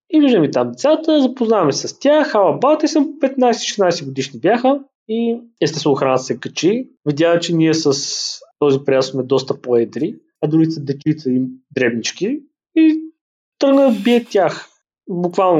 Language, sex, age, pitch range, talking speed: Bulgarian, male, 20-39, 145-200 Hz, 150 wpm